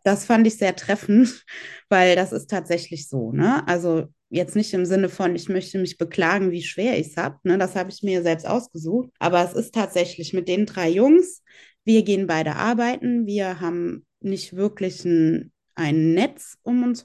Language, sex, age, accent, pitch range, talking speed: German, female, 20-39, German, 175-225 Hz, 185 wpm